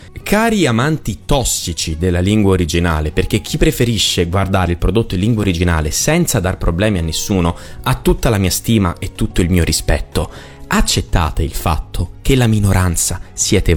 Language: Italian